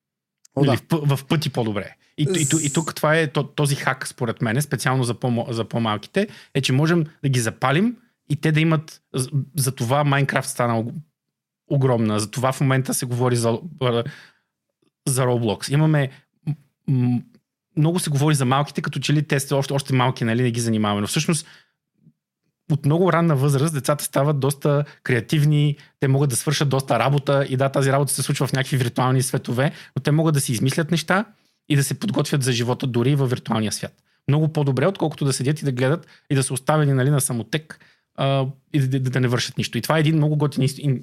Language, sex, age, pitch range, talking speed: Bulgarian, male, 30-49, 125-150 Hz, 190 wpm